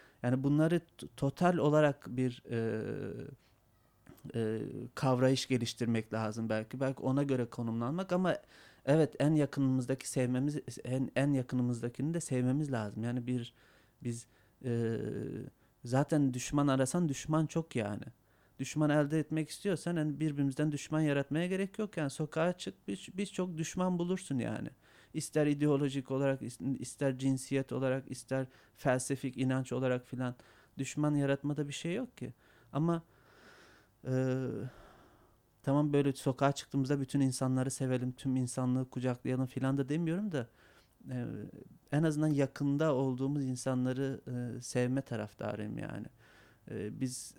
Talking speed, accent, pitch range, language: 125 wpm, native, 125-145 Hz, Turkish